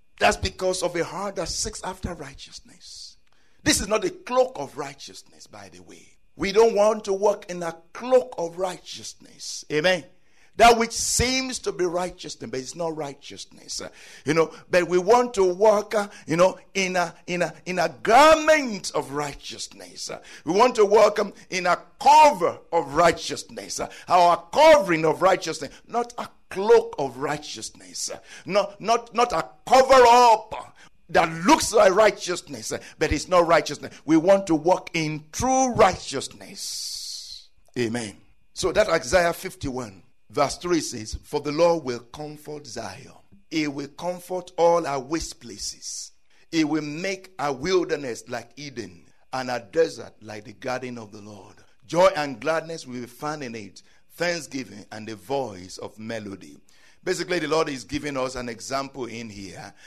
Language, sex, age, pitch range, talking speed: English, male, 60-79, 135-190 Hz, 165 wpm